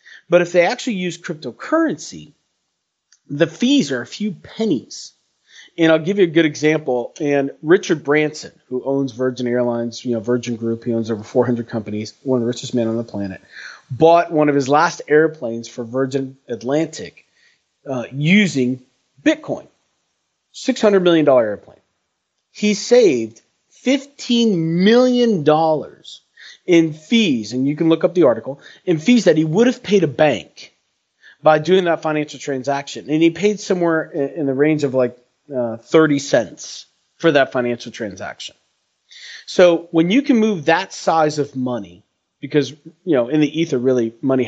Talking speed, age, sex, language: 160 wpm, 30-49, male, English